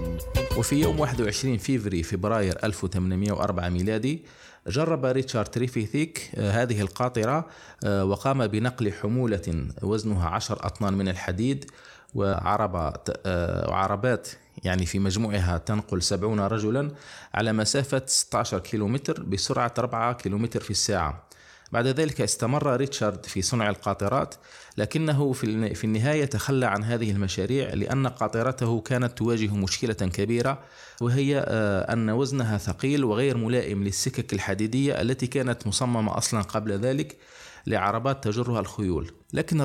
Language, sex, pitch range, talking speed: Arabic, male, 100-130 Hz, 110 wpm